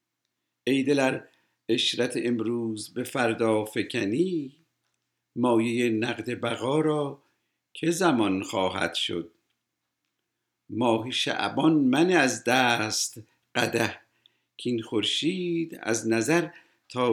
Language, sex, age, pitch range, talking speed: English, male, 50-69, 110-140 Hz, 90 wpm